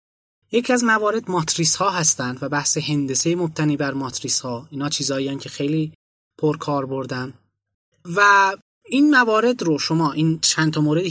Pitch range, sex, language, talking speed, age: 140-190 Hz, male, Persian, 155 wpm, 20-39